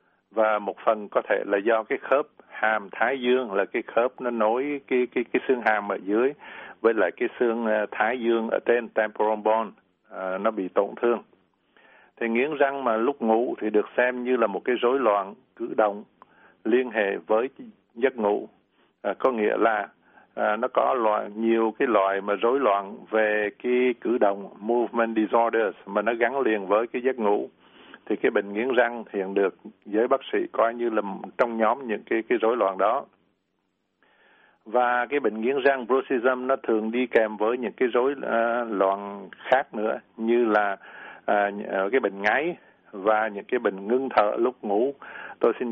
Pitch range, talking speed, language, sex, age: 105-125 Hz, 185 wpm, Vietnamese, male, 60-79